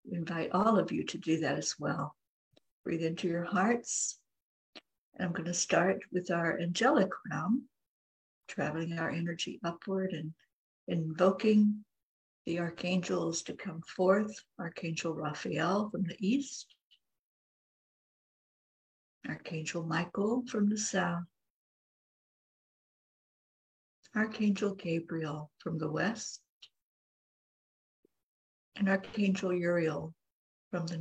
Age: 60-79